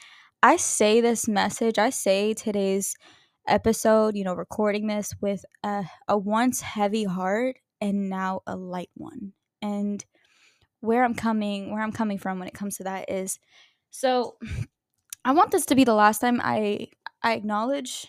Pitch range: 200-230 Hz